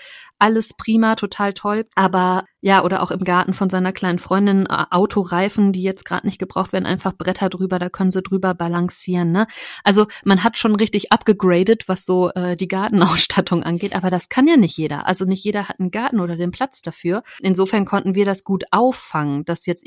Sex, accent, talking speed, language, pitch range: female, German, 200 wpm, German, 180-215 Hz